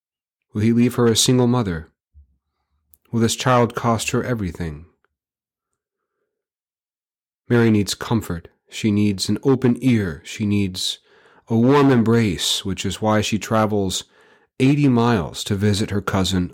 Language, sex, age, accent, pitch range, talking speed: English, male, 40-59, American, 90-120 Hz, 135 wpm